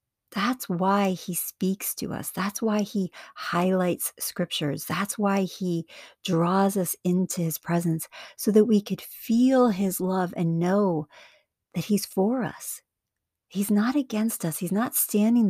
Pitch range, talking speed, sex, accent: 165-210 Hz, 150 wpm, female, American